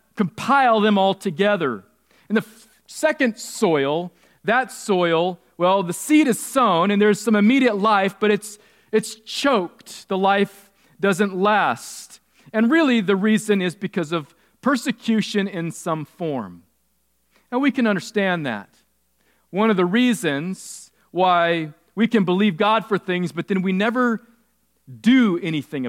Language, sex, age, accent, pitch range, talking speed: English, male, 40-59, American, 165-220 Hz, 140 wpm